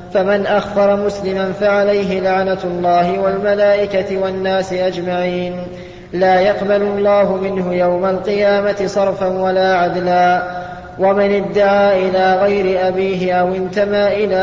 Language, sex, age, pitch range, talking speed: Arabic, male, 20-39, 180-200 Hz, 110 wpm